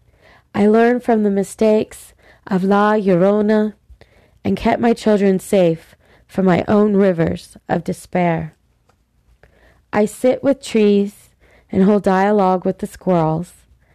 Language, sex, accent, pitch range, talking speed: English, female, American, 170-215 Hz, 125 wpm